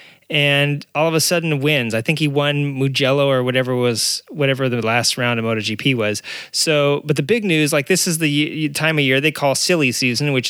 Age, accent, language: 30-49, American, English